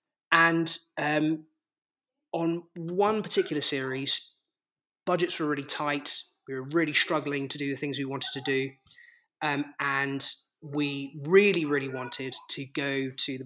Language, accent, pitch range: English, British, 135-175 Hz